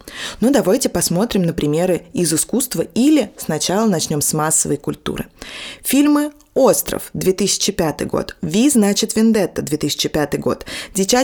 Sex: female